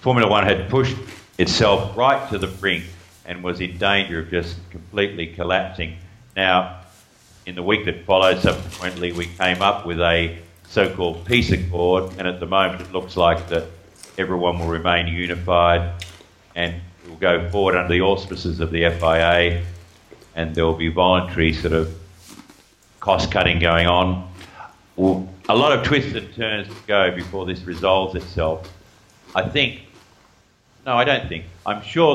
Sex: male